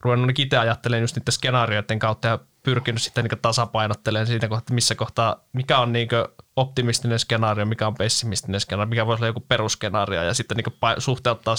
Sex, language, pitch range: male, Finnish, 115-130 Hz